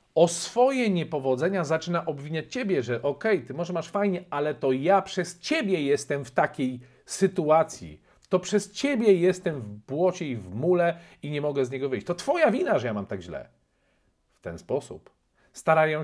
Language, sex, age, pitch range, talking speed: Polish, male, 50-69, 135-185 Hz, 180 wpm